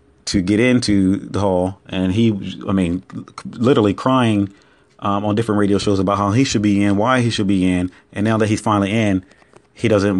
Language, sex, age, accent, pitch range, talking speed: English, male, 30-49, American, 100-120 Hz, 205 wpm